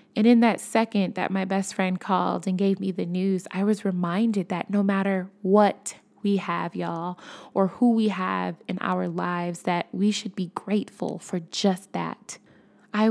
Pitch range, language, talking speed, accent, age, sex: 180-210 Hz, English, 185 wpm, American, 20-39, female